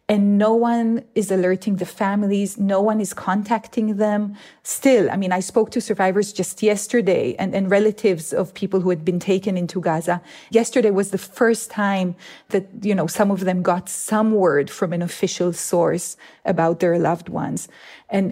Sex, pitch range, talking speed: female, 185-215 Hz, 180 wpm